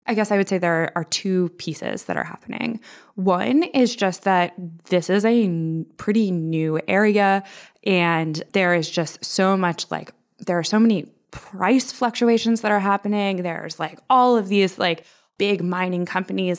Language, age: English, 20-39